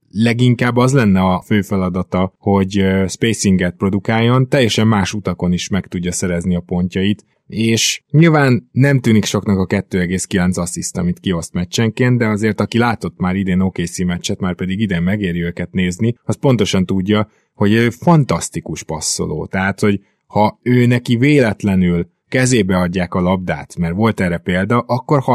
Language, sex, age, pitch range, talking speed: Hungarian, male, 20-39, 90-115 Hz, 155 wpm